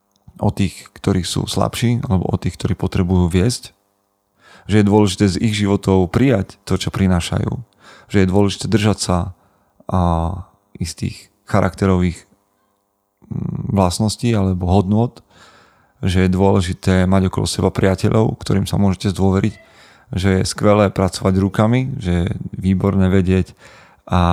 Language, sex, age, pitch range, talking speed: Slovak, male, 30-49, 95-105 Hz, 130 wpm